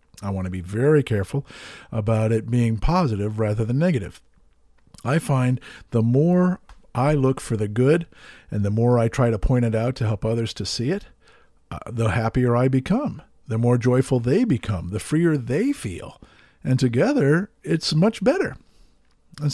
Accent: American